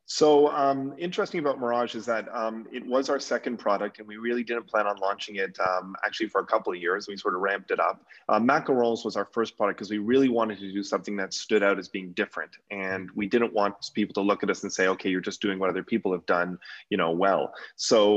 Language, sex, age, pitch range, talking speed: English, male, 30-49, 100-115 Hz, 255 wpm